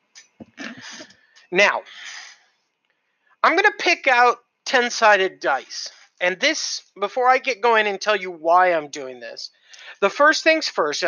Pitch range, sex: 175-245 Hz, male